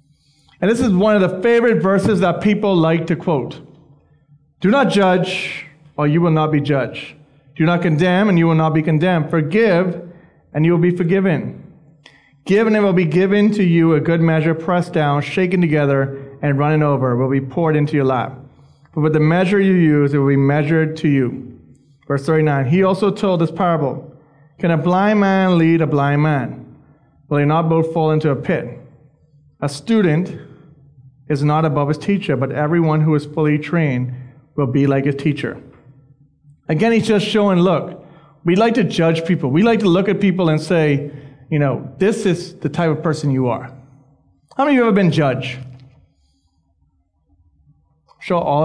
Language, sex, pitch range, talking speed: English, male, 140-175 Hz, 190 wpm